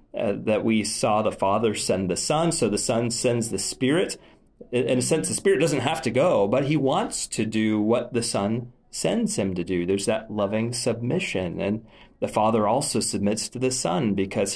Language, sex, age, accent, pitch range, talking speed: English, male, 30-49, American, 100-125 Hz, 205 wpm